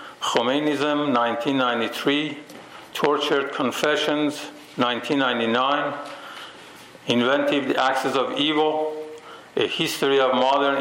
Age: 50-69